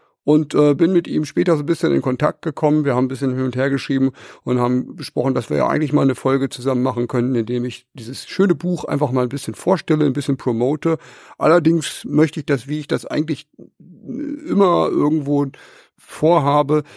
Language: German